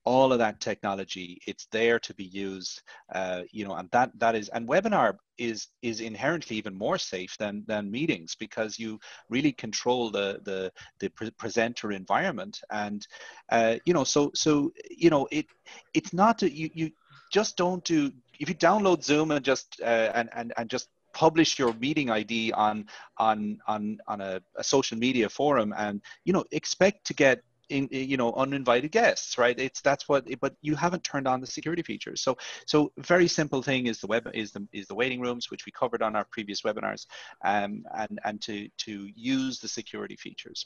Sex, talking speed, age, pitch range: male, 185 wpm, 30-49, 110-150 Hz